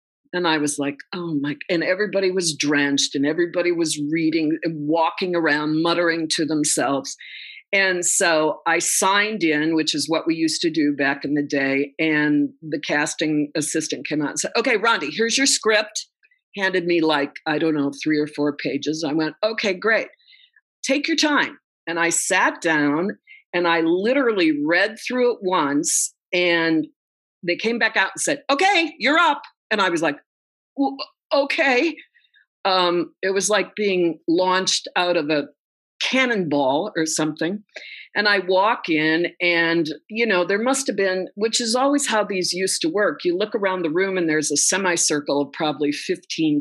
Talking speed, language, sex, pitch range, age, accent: 175 wpm, English, female, 160-265 Hz, 50-69, American